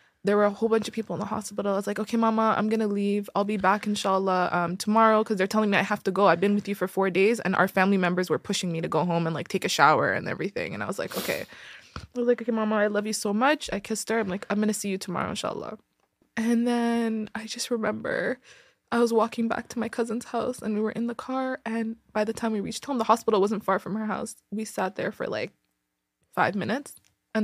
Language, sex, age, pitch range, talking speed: English, female, 20-39, 185-220 Hz, 275 wpm